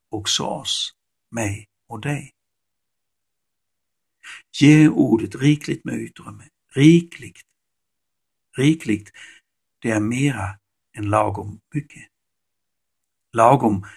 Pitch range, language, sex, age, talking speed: 105-140 Hz, Swedish, male, 60-79, 80 wpm